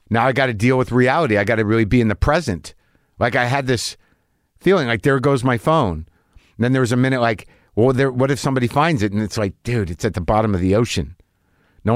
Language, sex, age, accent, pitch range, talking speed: English, male, 50-69, American, 105-135 Hz, 255 wpm